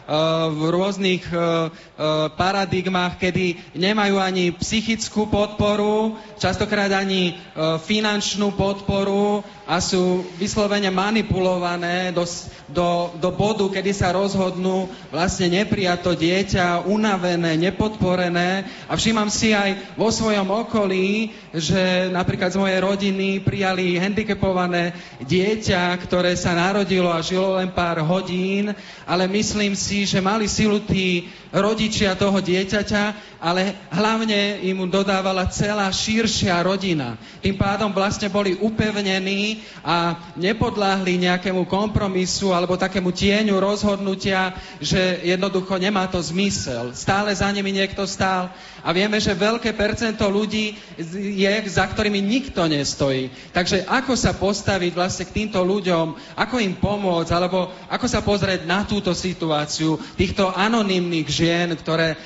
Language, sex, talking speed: Slovak, male, 120 wpm